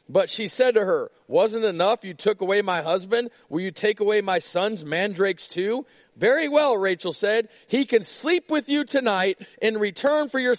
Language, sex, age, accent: English, male, 40-59, American